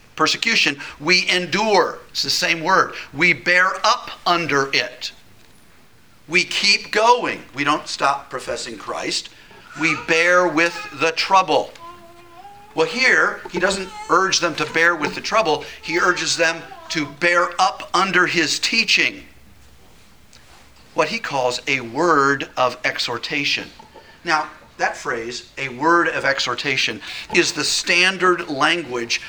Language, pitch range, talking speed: English, 140-180 Hz, 130 wpm